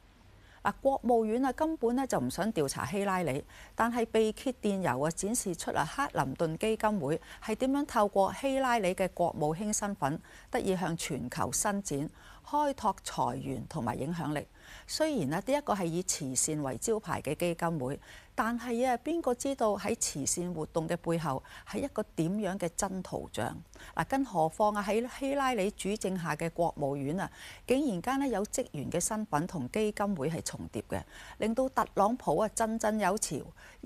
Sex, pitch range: female, 150-225 Hz